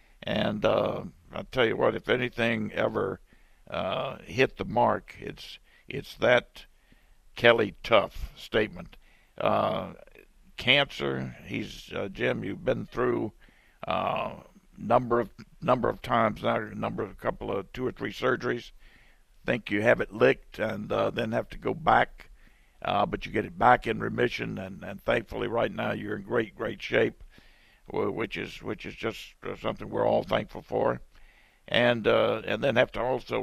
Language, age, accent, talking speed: English, 60-79, American, 160 wpm